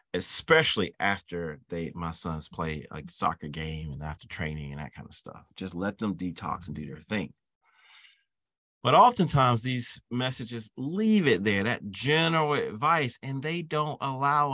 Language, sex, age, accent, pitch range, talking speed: English, male, 40-59, American, 105-145 Hz, 160 wpm